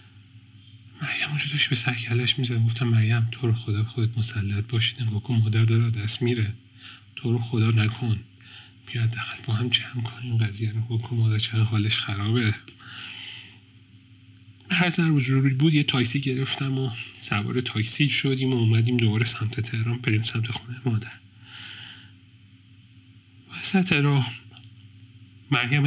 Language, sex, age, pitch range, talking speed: Persian, male, 40-59, 115-135 Hz, 135 wpm